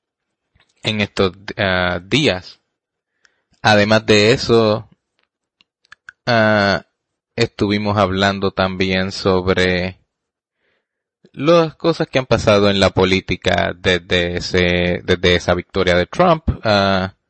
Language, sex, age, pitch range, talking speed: English, male, 20-39, 90-100 Hz, 85 wpm